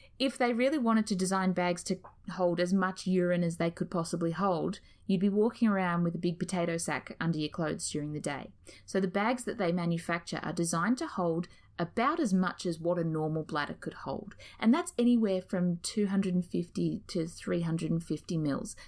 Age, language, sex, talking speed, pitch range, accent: 30-49, English, female, 190 wpm, 170-210 Hz, Australian